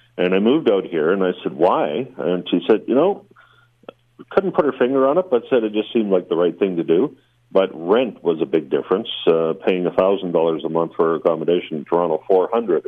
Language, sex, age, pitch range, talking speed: English, male, 50-69, 85-120 Hz, 230 wpm